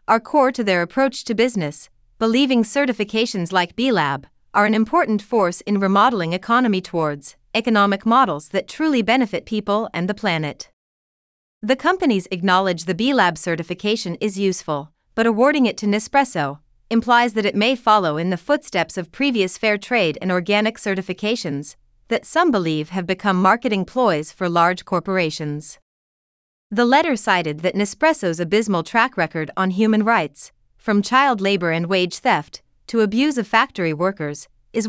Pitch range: 170-230 Hz